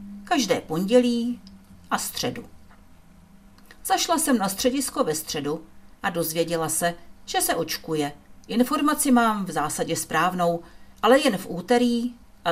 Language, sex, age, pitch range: Czech, female, 50-69, 155-245 Hz